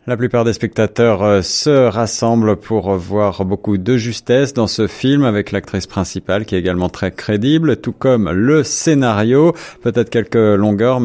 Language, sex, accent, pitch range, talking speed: French, male, French, 100-125 Hz, 170 wpm